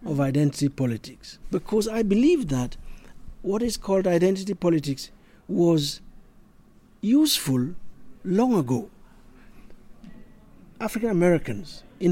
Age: 60-79